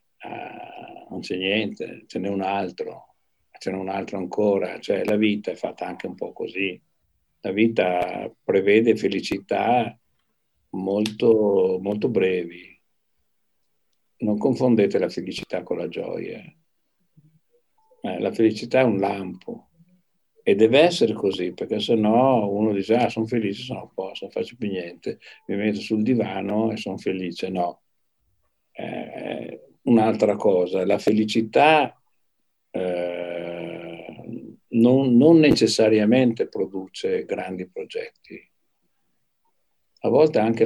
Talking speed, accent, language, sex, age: 120 wpm, native, Italian, male, 60-79